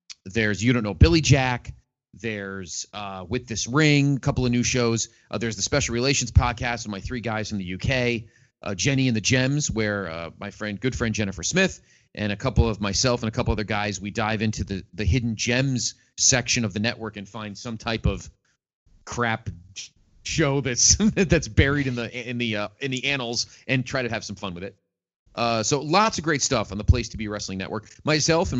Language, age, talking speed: English, 30-49, 220 wpm